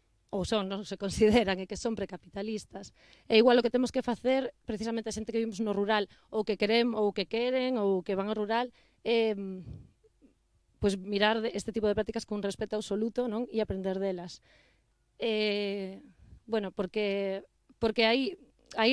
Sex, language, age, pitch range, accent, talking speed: female, Portuguese, 20-39, 200-230 Hz, Spanish, 180 wpm